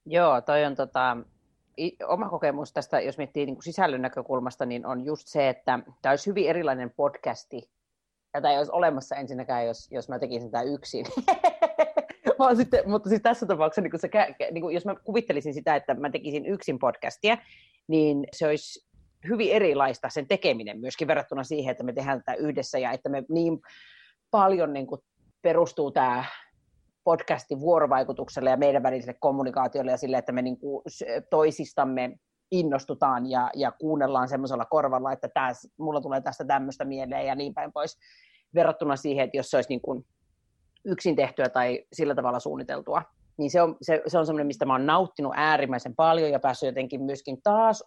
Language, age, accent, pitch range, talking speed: Finnish, 30-49, native, 130-165 Hz, 165 wpm